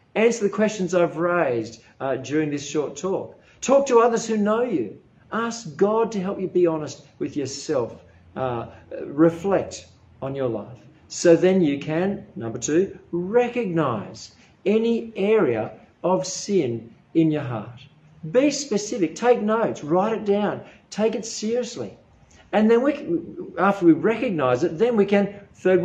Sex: male